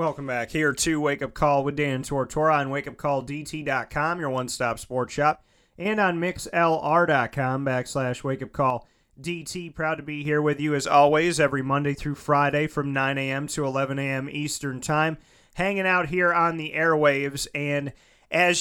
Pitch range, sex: 140-165 Hz, male